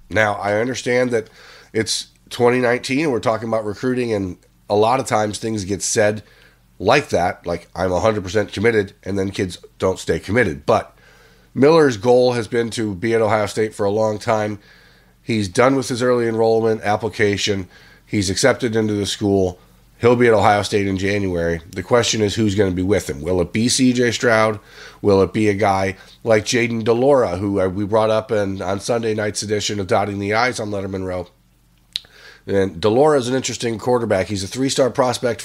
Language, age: English, 30-49